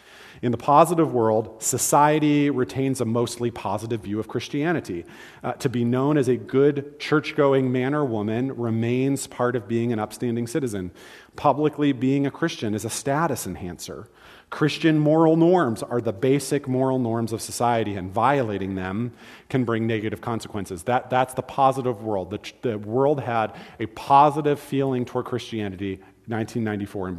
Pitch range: 110-140 Hz